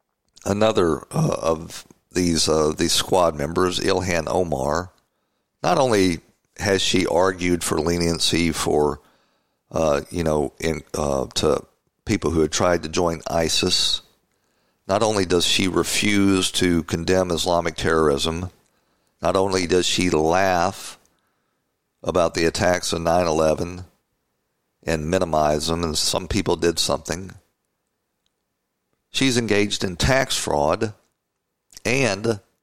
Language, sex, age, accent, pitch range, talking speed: English, male, 50-69, American, 80-100 Hz, 120 wpm